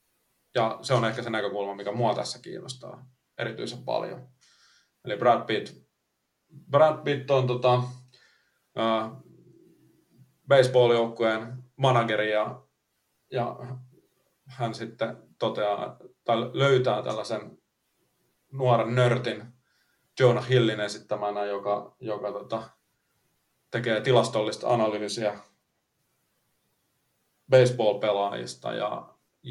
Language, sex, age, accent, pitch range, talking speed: Finnish, male, 30-49, native, 105-125 Hz, 75 wpm